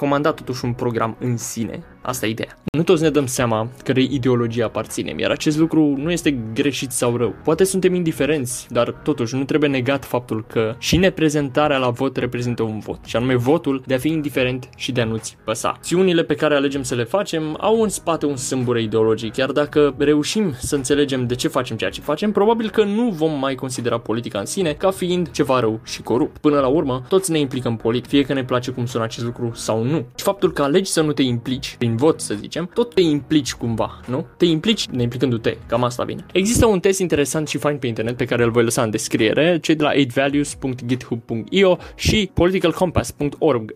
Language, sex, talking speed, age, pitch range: Romanian, male, 215 wpm, 20-39, 125-160 Hz